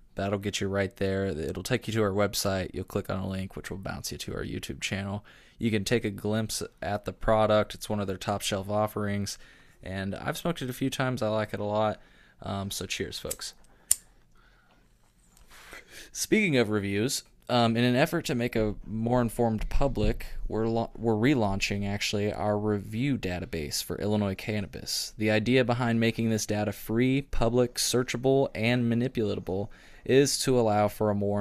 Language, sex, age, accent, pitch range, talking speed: English, male, 20-39, American, 100-125 Hz, 180 wpm